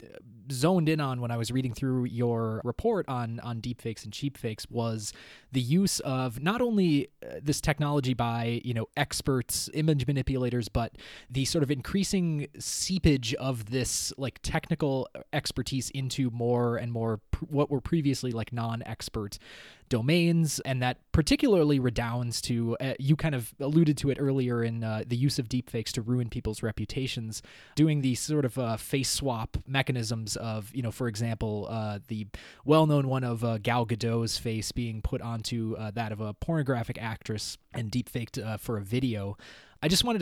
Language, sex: English, male